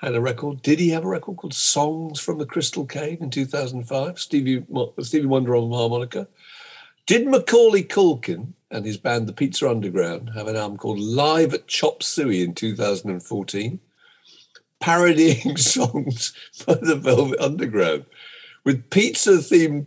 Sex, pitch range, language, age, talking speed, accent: male, 115-170 Hz, English, 50-69, 145 wpm, British